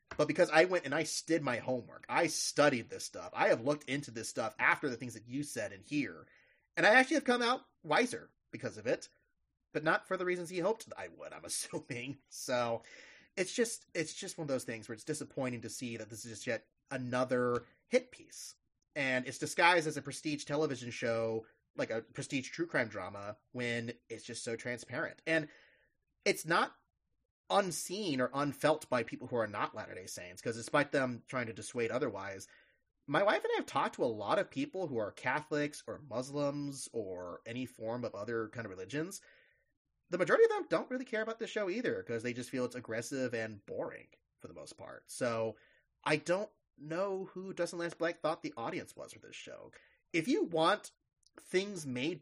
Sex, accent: male, American